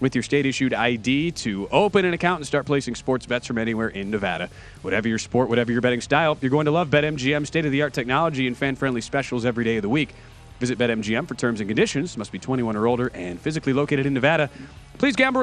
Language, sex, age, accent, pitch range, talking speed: English, male, 30-49, American, 125-175 Hz, 220 wpm